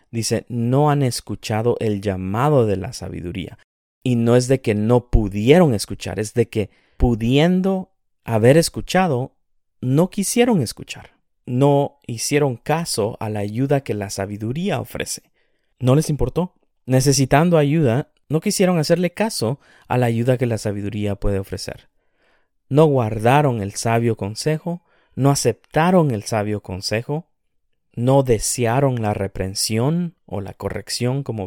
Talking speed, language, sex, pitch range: 135 wpm, Spanish, male, 100-140 Hz